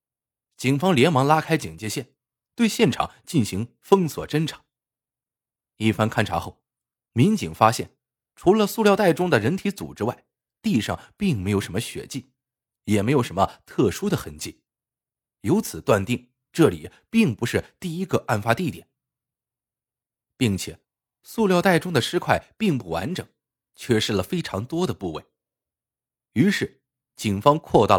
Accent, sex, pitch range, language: native, male, 110-160 Hz, Chinese